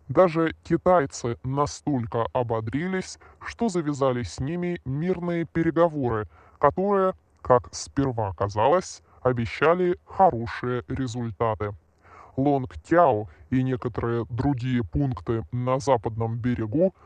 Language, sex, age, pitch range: Russian, female, 20-39, 120-150 Hz